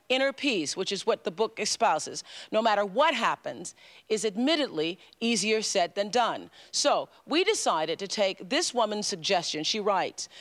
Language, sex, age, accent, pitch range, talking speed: English, female, 40-59, American, 180-225 Hz, 160 wpm